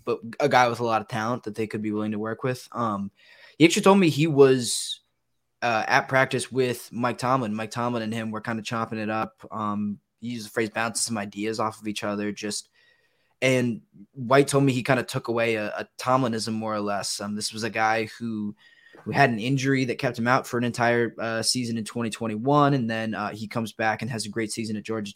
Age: 20-39